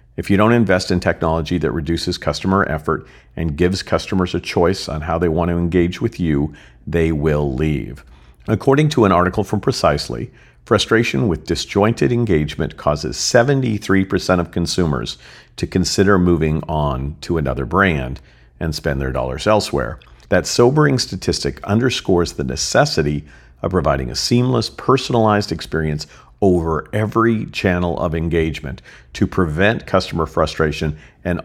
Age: 50-69